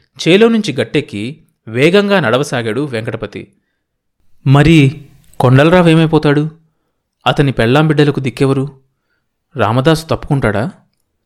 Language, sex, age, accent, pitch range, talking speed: Telugu, male, 30-49, native, 115-145 Hz, 75 wpm